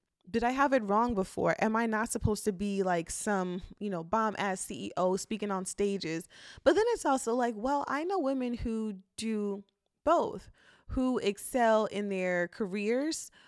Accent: American